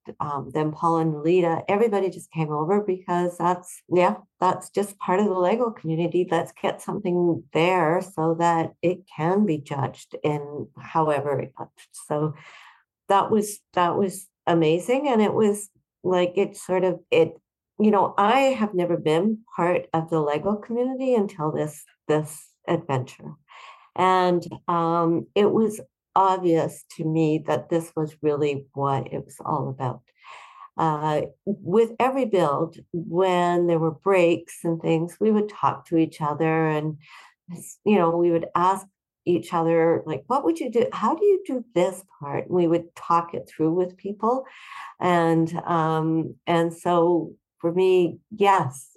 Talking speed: 155 wpm